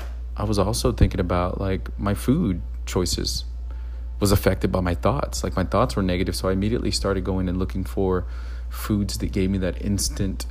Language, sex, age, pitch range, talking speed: English, male, 30-49, 65-95 Hz, 190 wpm